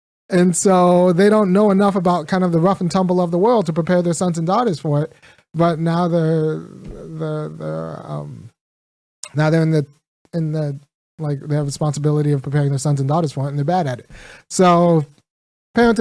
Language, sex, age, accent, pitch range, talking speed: English, male, 30-49, American, 145-180 Hz, 205 wpm